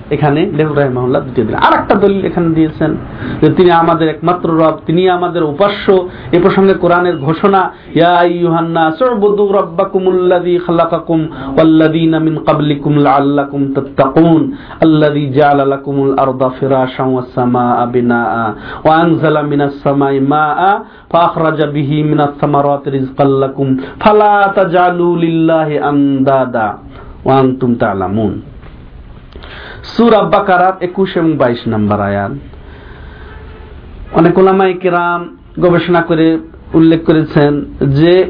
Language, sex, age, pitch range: Bengali, male, 50-69, 140-190 Hz